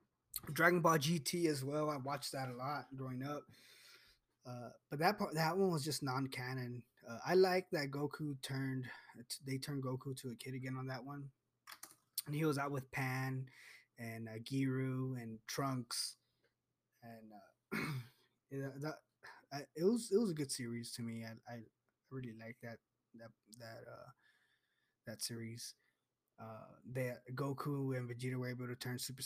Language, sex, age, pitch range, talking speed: English, male, 20-39, 120-145 Hz, 165 wpm